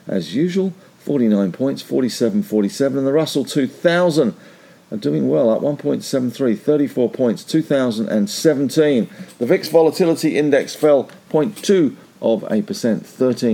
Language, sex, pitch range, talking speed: English, male, 105-150 Hz, 115 wpm